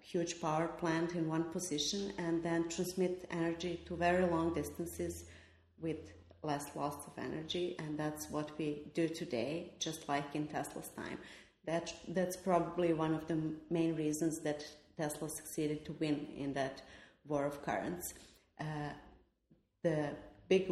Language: English